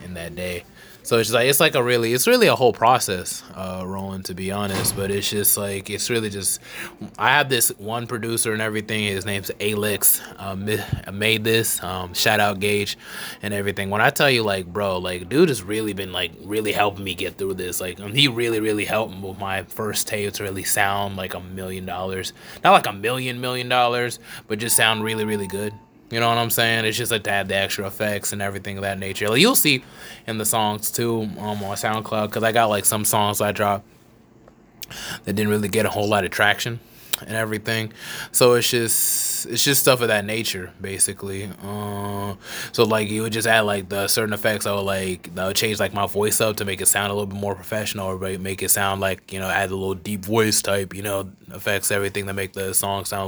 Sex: male